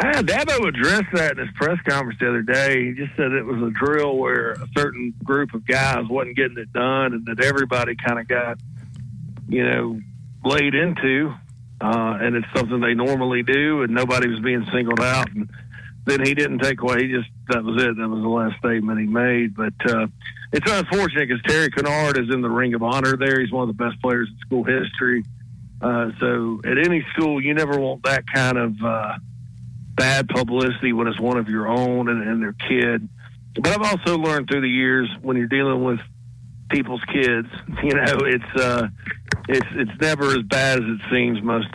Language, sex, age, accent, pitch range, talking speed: English, male, 50-69, American, 115-135 Hz, 210 wpm